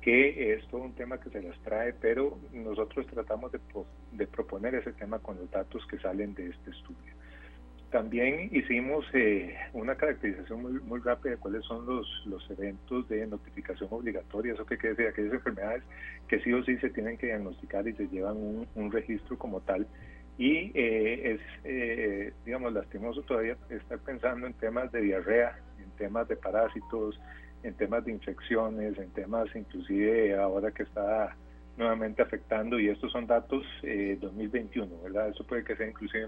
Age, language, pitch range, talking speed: 40-59, Spanish, 100-120 Hz, 175 wpm